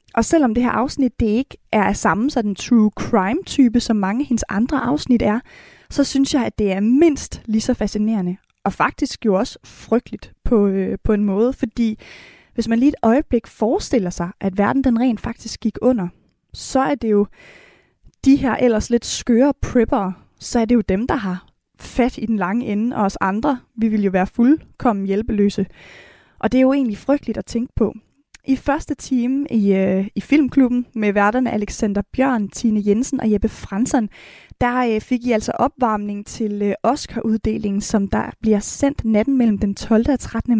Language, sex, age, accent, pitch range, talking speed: Danish, female, 20-39, native, 210-260 Hz, 180 wpm